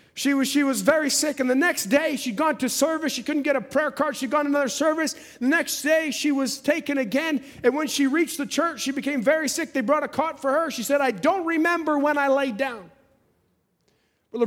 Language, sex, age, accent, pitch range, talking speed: English, male, 30-49, American, 245-305 Hz, 235 wpm